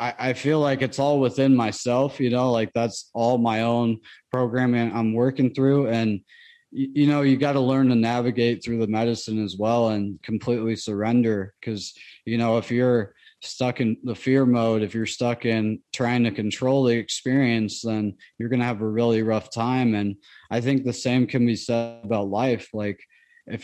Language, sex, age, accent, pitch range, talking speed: English, male, 20-39, American, 110-125 Hz, 190 wpm